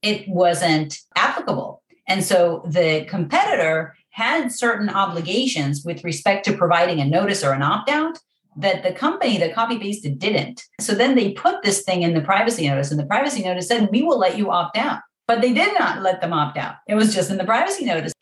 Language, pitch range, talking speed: English, 165-225 Hz, 200 wpm